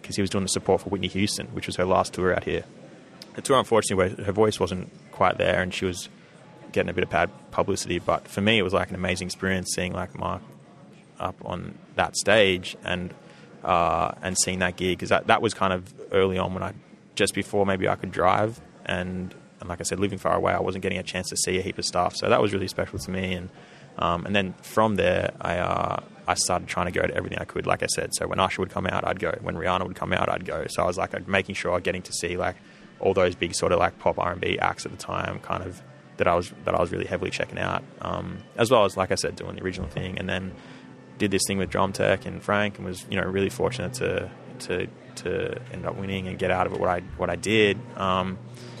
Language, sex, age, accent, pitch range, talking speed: English, male, 20-39, Australian, 90-100 Hz, 260 wpm